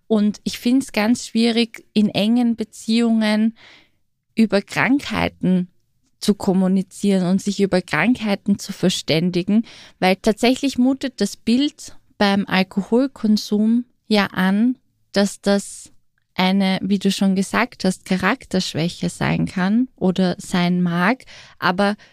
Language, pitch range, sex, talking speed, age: German, 195-225 Hz, female, 115 wpm, 20-39